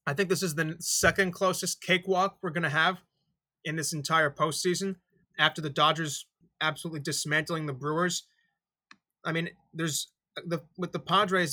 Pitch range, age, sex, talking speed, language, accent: 150-175 Hz, 30-49, male, 155 wpm, English, American